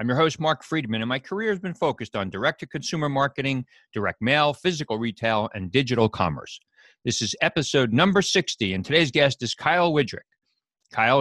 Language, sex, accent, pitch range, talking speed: English, male, American, 115-155 Hz, 175 wpm